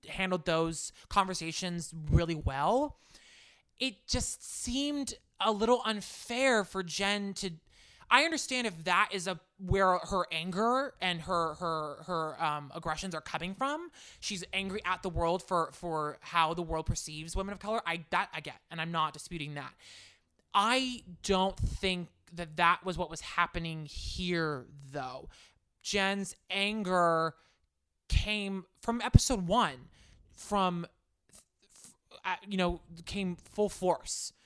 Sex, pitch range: male, 160-195 Hz